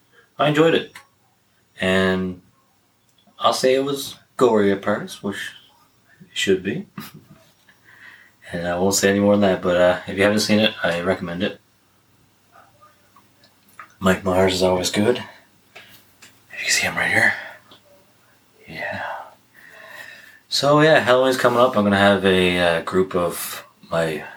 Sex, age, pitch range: male, 30-49, 90-115 Hz